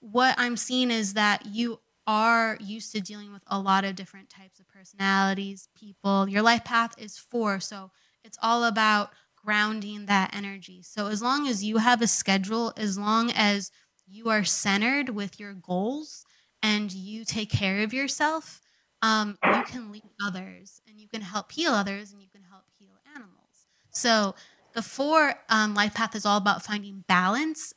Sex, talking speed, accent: female, 175 wpm, American